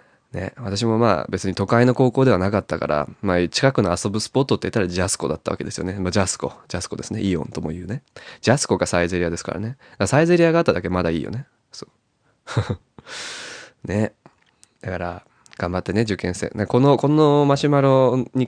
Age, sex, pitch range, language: 20-39, male, 90-120 Hz, Japanese